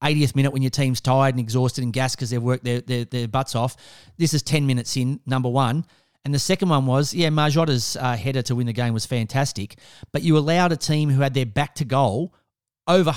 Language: English